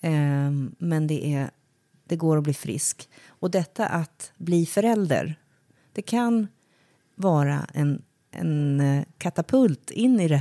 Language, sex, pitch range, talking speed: Swedish, female, 145-180 Hz, 125 wpm